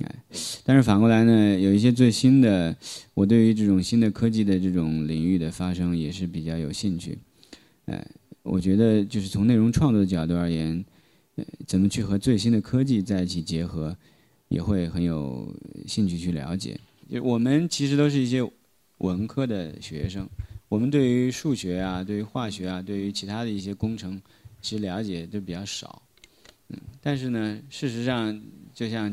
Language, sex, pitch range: Chinese, male, 90-115 Hz